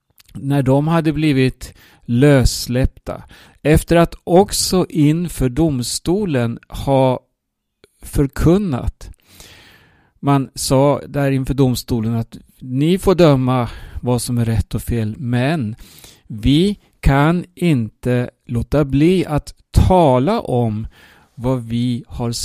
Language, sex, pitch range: Swedish, male, 120-155 Hz